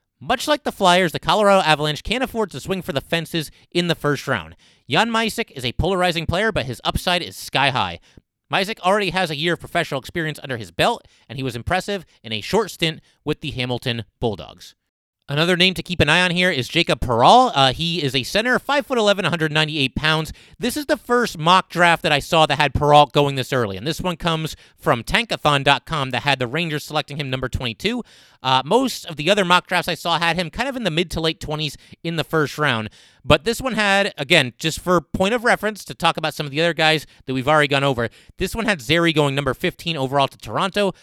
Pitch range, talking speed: 135-185 Hz, 235 wpm